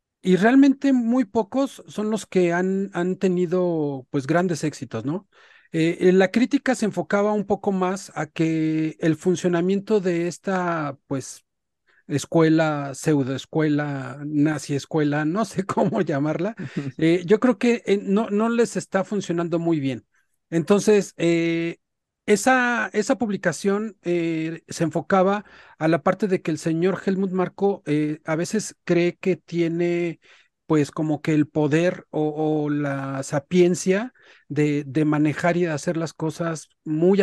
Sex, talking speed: male, 145 wpm